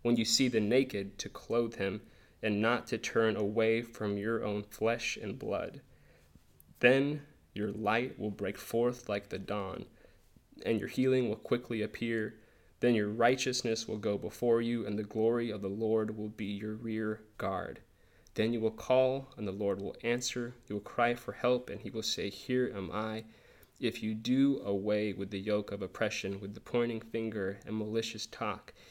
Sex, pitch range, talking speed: male, 105-115 Hz, 185 wpm